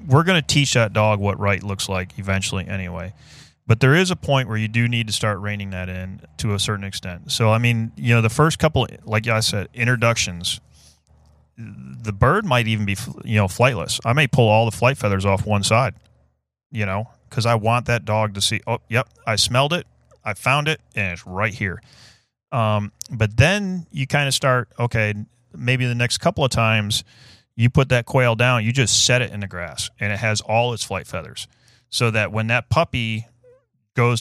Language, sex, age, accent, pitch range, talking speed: English, male, 30-49, American, 100-125 Hz, 210 wpm